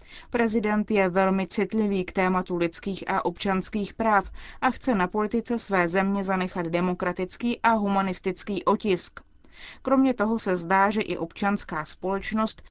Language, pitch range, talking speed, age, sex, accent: Czech, 180-220 Hz, 135 wpm, 20-39, female, native